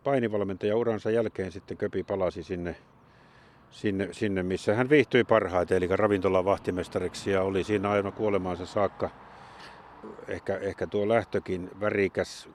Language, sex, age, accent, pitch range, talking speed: Finnish, male, 50-69, native, 85-100 Hz, 125 wpm